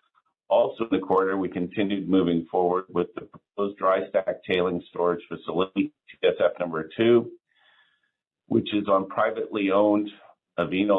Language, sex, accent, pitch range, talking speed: English, male, American, 90-105 Hz, 135 wpm